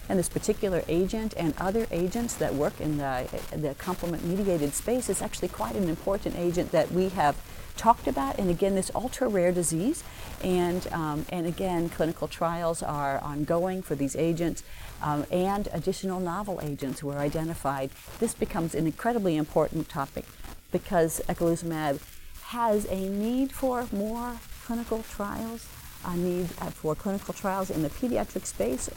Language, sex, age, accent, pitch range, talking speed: English, female, 50-69, American, 145-190 Hz, 155 wpm